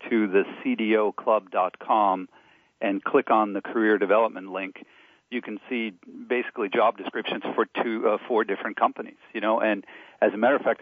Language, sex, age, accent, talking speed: English, male, 50-69, American, 165 wpm